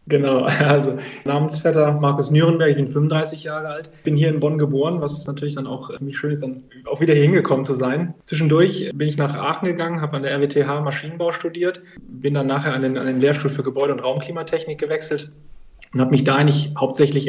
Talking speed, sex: 210 wpm, male